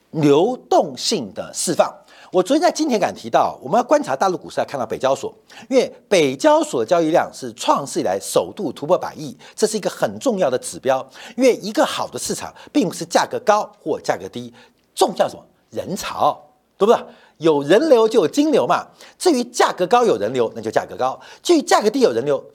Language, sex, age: Chinese, male, 50-69